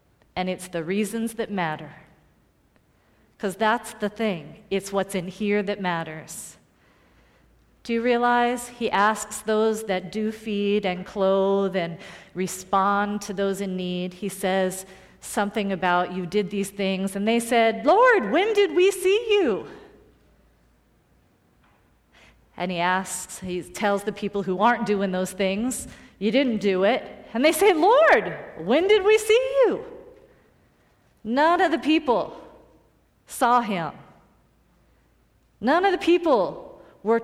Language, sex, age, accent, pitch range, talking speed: English, female, 40-59, American, 195-285 Hz, 140 wpm